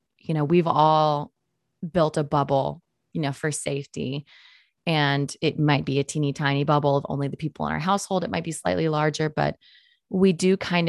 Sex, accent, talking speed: female, American, 195 wpm